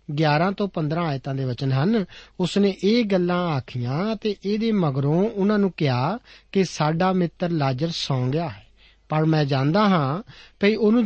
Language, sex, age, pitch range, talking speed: Punjabi, male, 50-69, 135-185 Hz, 170 wpm